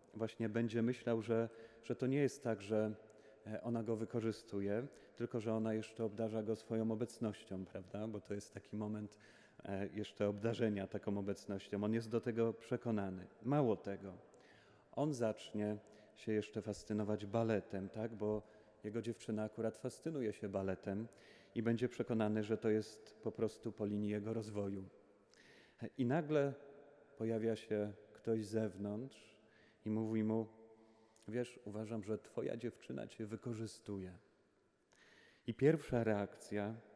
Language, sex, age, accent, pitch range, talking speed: Polish, male, 30-49, native, 105-115 Hz, 135 wpm